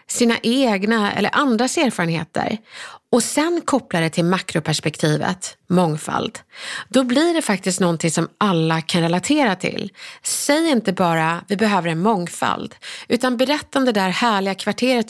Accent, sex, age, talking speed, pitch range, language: native, female, 30-49, 145 wpm, 170-240 Hz, Swedish